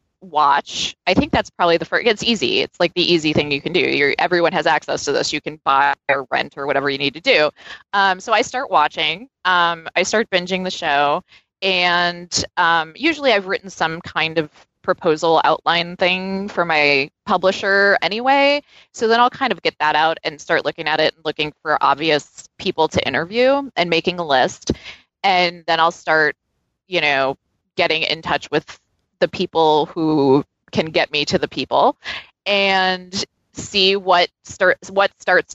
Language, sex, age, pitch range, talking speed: English, female, 20-39, 155-195 Hz, 185 wpm